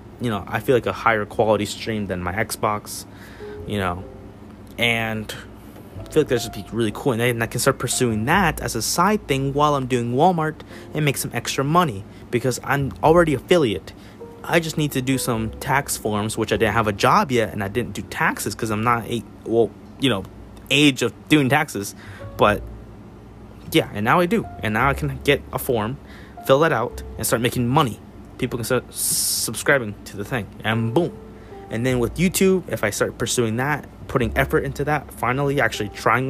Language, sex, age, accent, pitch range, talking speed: English, male, 20-39, American, 105-140 Hz, 200 wpm